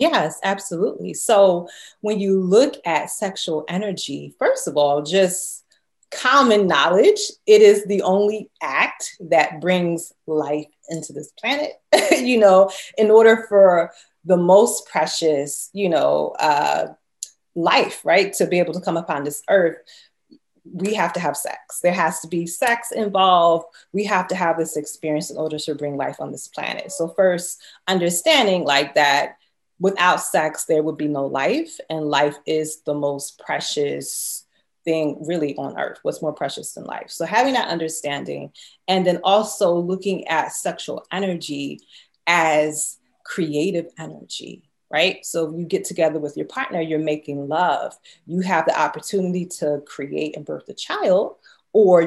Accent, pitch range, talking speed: American, 155-195 Hz, 155 wpm